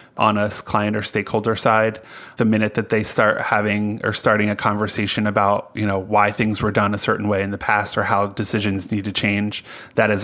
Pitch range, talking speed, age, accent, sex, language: 105-120 Hz, 215 wpm, 30-49, American, male, English